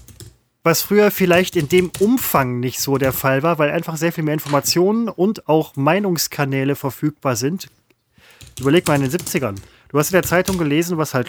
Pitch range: 135-180 Hz